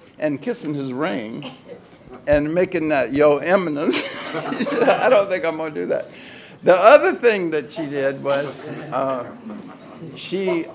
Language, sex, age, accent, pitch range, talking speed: English, male, 60-79, American, 125-155 Hz, 145 wpm